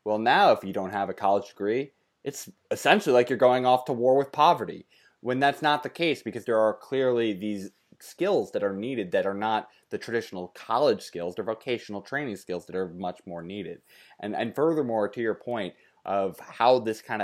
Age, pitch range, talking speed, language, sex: 20-39, 100-125 Hz, 205 wpm, English, male